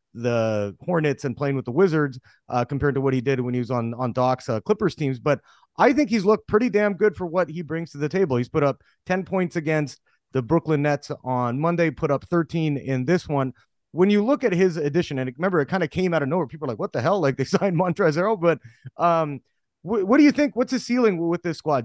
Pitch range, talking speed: 135-175 Hz, 255 wpm